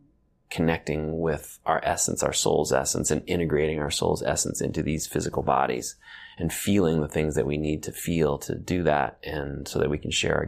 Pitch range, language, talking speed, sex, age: 75-90 Hz, English, 200 wpm, male, 30-49